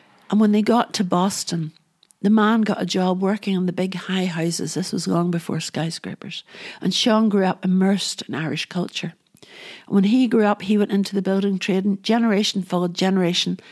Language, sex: English, female